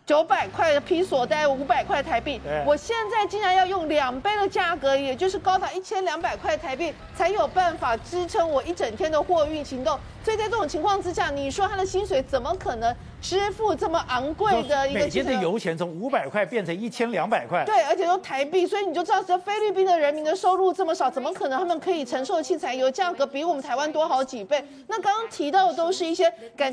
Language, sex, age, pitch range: Chinese, female, 40-59, 290-380 Hz